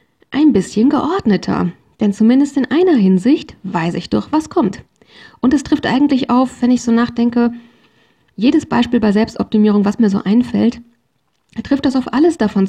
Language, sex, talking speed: German, female, 165 wpm